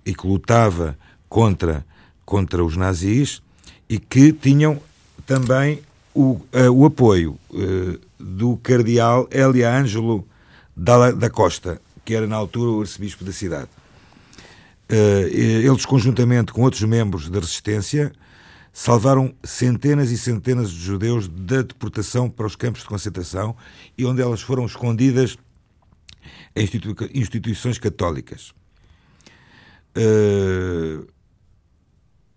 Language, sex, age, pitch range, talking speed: Portuguese, male, 50-69, 95-125 Hz, 110 wpm